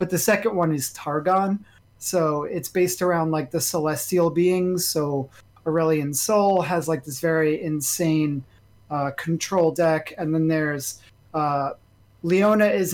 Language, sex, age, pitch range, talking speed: English, male, 30-49, 145-175 Hz, 145 wpm